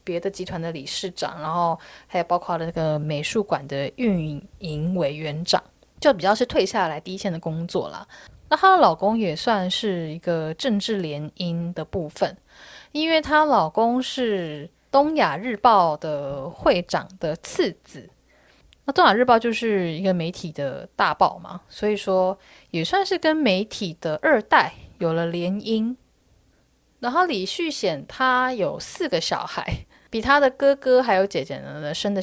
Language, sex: Chinese, female